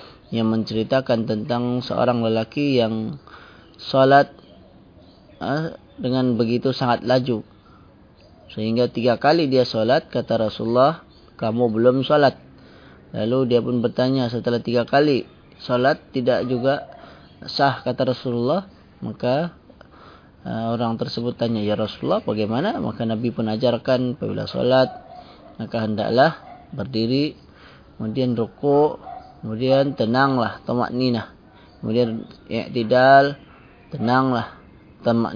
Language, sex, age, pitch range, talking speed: Malay, male, 20-39, 110-130 Hz, 100 wpm